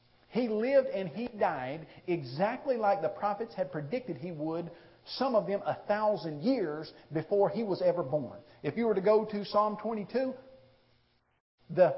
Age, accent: 50-69, American